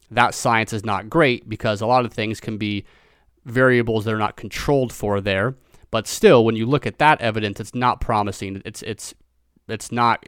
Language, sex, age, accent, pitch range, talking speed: English, male, 30-49, American, 105-120 Hz, 200 wpm